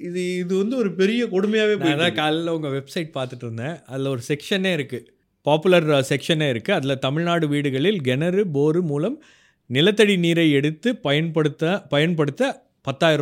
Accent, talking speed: native, 135 wpm